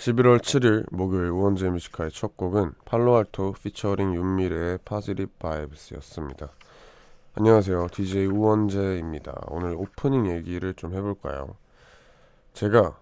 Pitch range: 85-105 Hz